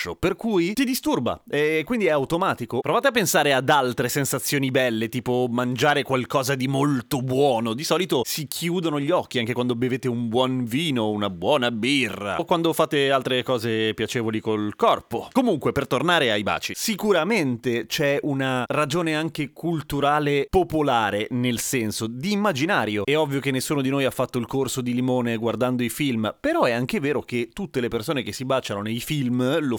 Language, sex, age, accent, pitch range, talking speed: Italian, male, 30-49, native, 115-150 Hz, 180 wpm